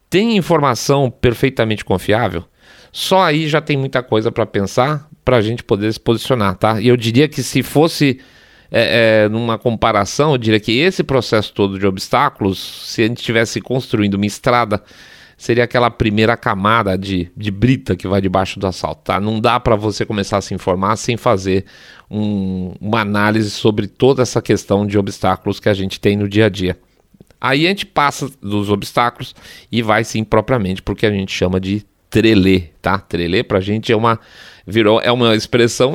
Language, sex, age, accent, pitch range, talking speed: Portuguese, male, 40-59, Brazilian, 100-120 Hz, 180 wpm